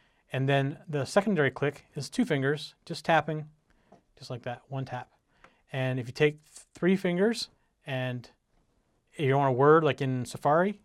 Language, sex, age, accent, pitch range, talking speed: English, male, 40-59, American, 135-170 Hz, 160 wpm